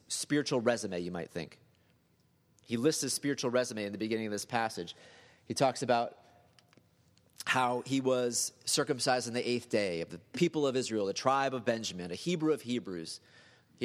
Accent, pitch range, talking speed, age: American, 110-135 Hz, 180 wpm, 30-49